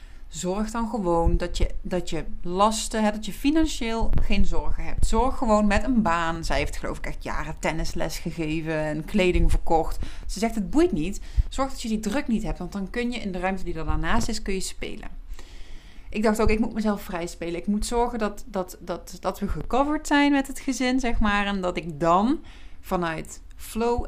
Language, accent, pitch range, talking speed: Dutch, Dutch, 170-225 Hz, 205 wpm